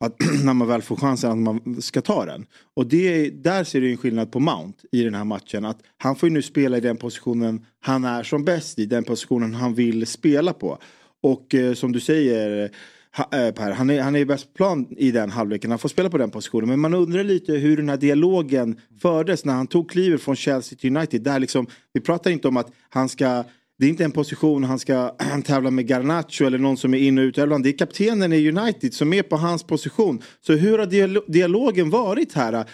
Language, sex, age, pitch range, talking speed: Swedish, male, 40-59, 130-185 Hz, 230 wpm